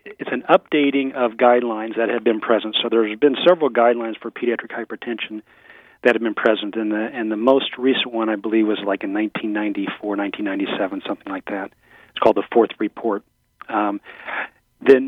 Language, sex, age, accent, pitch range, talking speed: English, male, 40-59, American, 110-125 Hz, 180 wpm